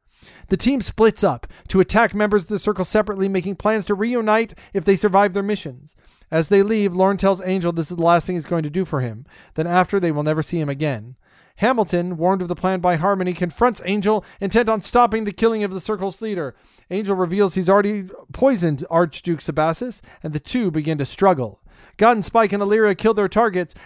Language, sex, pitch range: English, male, 160-205 Hz